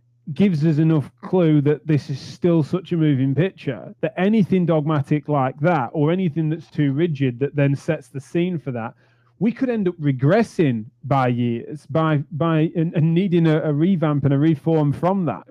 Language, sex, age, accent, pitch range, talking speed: English, male, 30-49, British, 135-165 Hz, 180 wpm